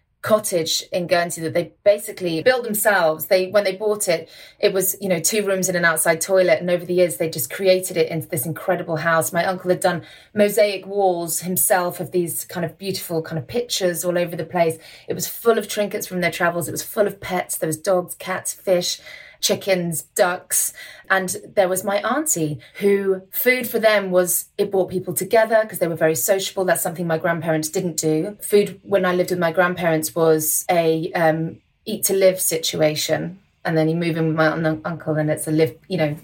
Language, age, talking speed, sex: English, 30-49, 210 wpm, female